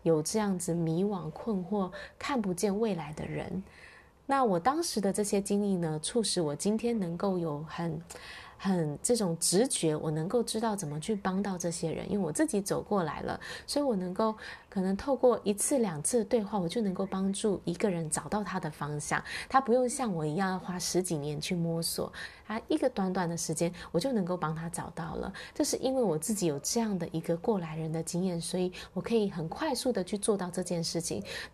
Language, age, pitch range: Chinese, 20-39, 165-220 Hz